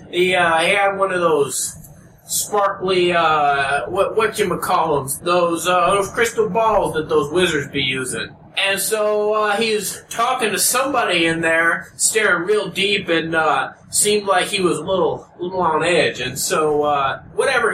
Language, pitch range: English, 160-205 Hz